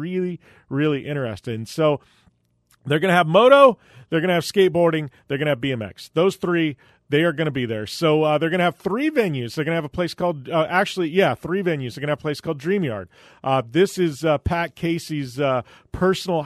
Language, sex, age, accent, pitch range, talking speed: English, male, 40-59, American, 140-175 Hz, 235 wpm